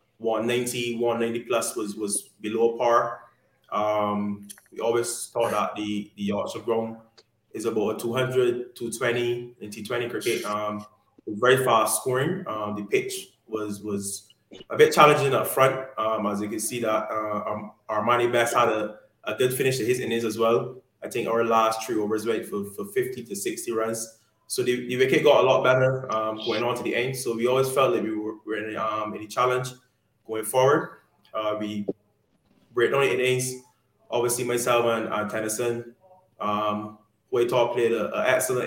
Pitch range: 110-125 Hz